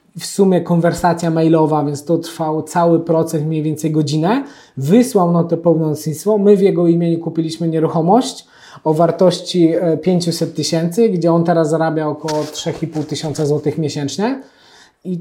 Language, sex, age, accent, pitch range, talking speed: Polish, male, 20-39, native, 165-200 Hz, 145 wpm